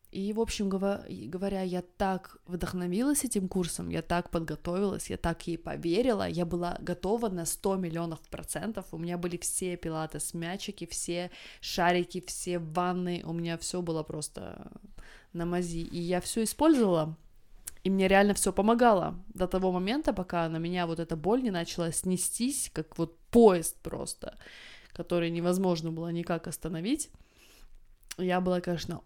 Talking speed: 150 wpm